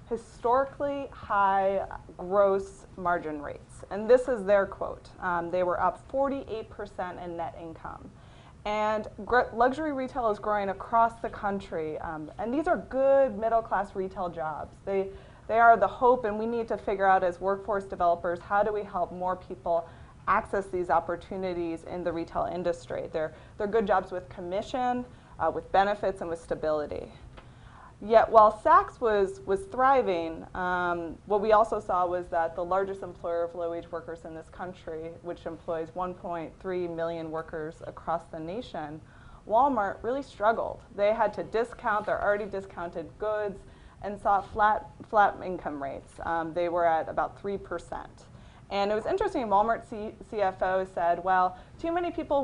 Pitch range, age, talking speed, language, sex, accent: 170-220 Hz, 20-39, 160 wpm, English, female, American